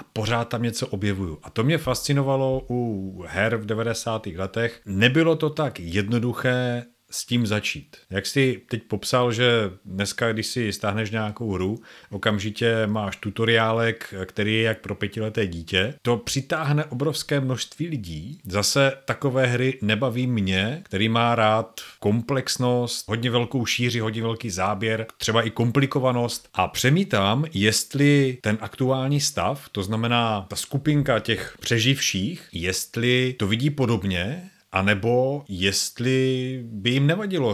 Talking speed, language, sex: 135 wpm, Czech, male